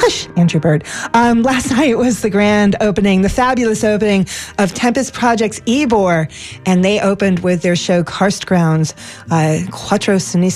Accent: American